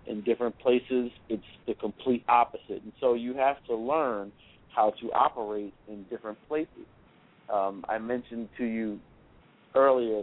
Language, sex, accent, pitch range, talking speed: English, male, American, 105-120 Hz, 145 wpm